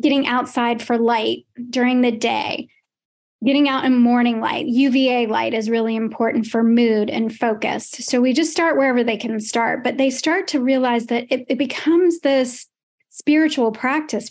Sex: female